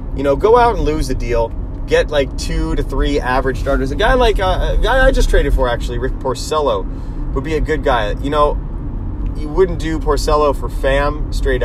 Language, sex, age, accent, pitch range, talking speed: English, male, 30-49, American, 125-160 Hz, 215 wpm